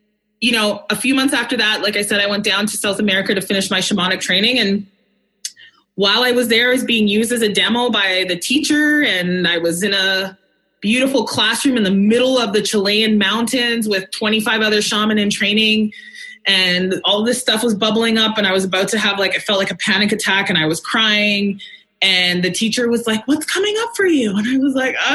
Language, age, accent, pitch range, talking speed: English, 20-39, American, 195-250 Hz, 220 wpm